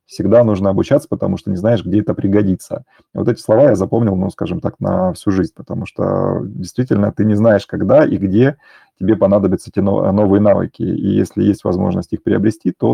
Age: 30-49